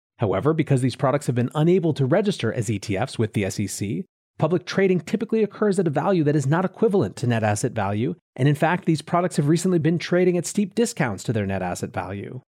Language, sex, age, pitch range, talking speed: English, male, 30-49, 120-175 Hz, 220 wpm